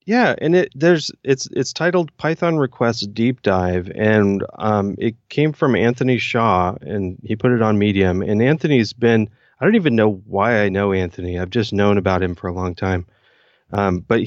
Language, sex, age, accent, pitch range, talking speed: English, male, 30-49, American, 100-125 Hz, 195 wpm